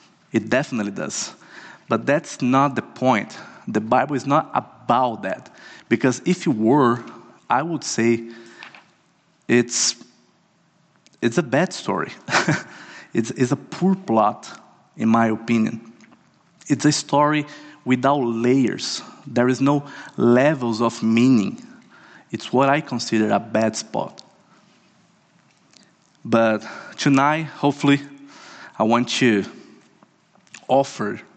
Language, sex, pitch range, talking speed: English, male, 115-145 Hz, 115 wpm